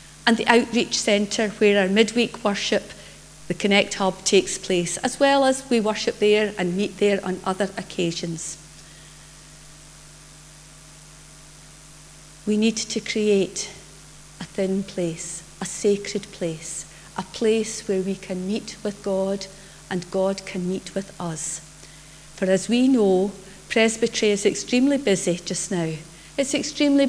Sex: female